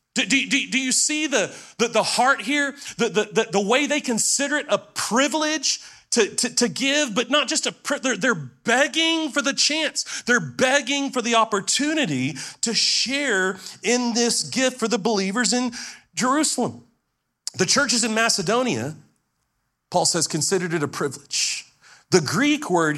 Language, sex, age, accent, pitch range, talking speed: English, male, 40-59, American, 165-255 Hz, 165 wpm